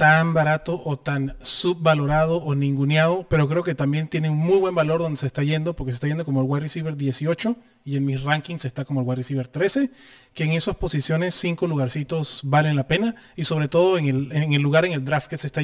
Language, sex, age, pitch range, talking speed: Spanish, male, 30-49, 135-170 Hz, 240 wpm